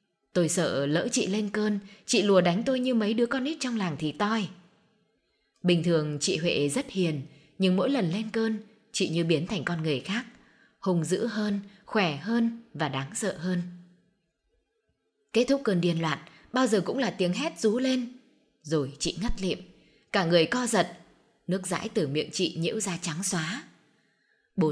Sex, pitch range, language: female, 170-215 Hz, Vietnamese